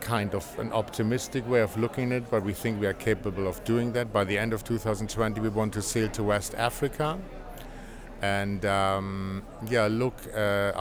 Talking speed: 195 wpm